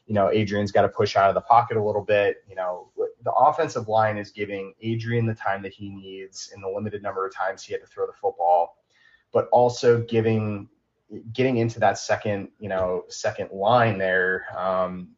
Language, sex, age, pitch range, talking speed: English, male, 30-49, 95-115 Hz, 200 wpm